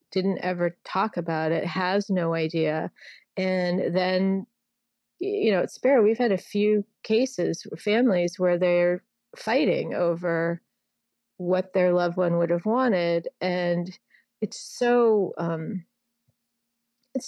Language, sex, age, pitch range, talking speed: English, female, 30-49, 175-225 Hz, 125 wpm